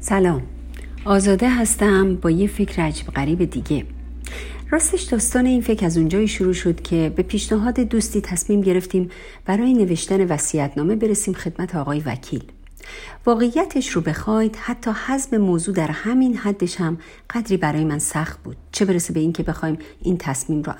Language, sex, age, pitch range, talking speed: Persian, female, 50-69, 155-230 Hz, 155 wpm